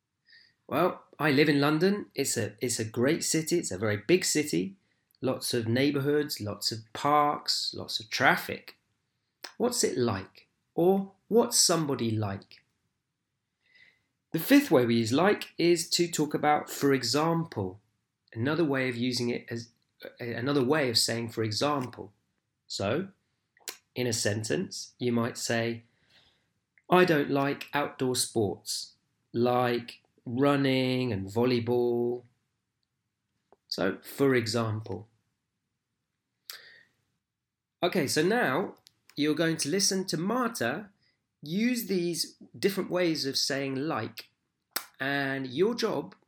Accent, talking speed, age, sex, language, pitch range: British, 120 wpm, 30-49, male, English, 120-165 Hz